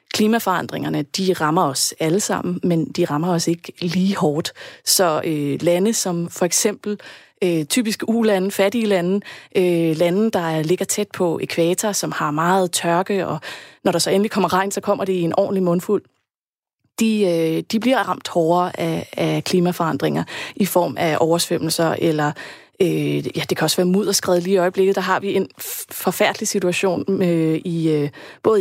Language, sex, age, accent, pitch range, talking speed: Danish, female, 30-49, native, 165-195 Hz, 170 wpm